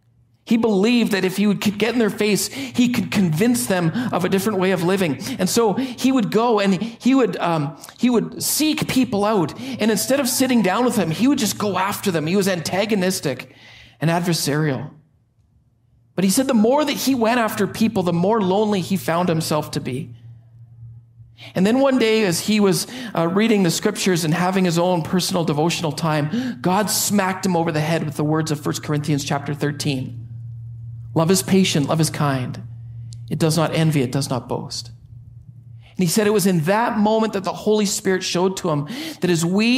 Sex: male